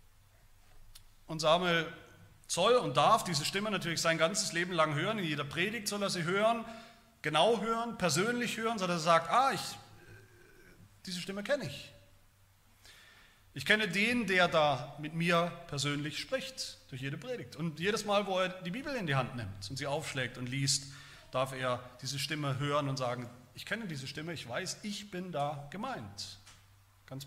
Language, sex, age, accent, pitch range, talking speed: German, male, 40-59, German, 125-185 Hz, 170 wpm